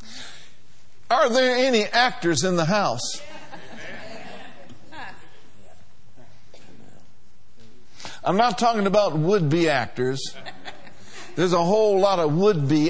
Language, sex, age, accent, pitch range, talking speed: English, male, 50-69, American, 130-195 Hz, 90 wpm